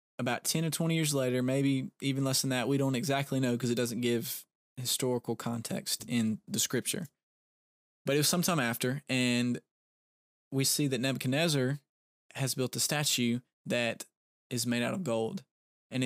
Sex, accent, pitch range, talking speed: male, American, 115-135 Hz, 170 wpm